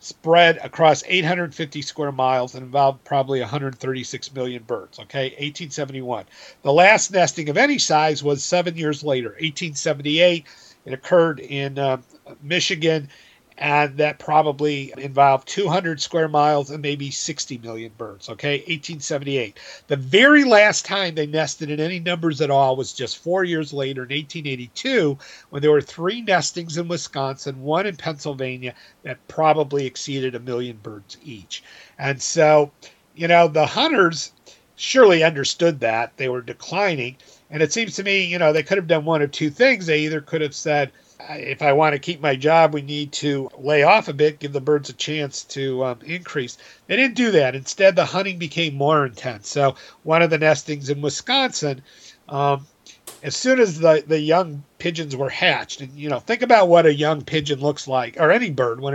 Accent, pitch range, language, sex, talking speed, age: American, 135-165 Hz, English, male, 175 wpm, 50-69